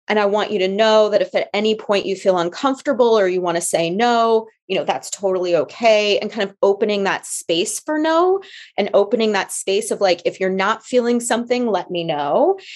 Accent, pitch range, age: American, 185-240 Hz, 30-49